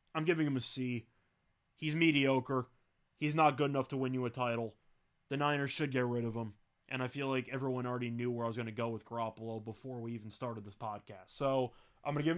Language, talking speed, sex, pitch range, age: English, 240 wpm, male, 130-155 Hz, 20-39